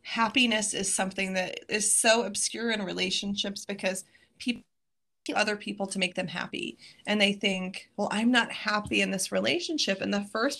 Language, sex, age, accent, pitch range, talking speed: English, female, 20-39, American, 190-230 Hz, 170 wpm